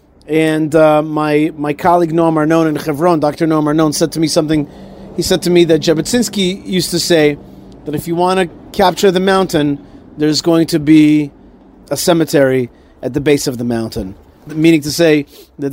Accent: American